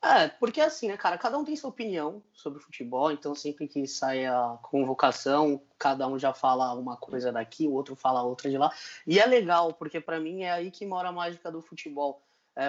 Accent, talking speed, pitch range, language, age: Brazilian, 220 wpm, 135-210 Hz, Portuguese, 20-39